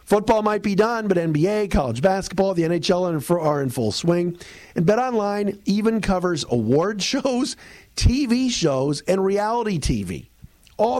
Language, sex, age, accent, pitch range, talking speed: English, male, 50-69, American, 135-190 Hz, 145 wpm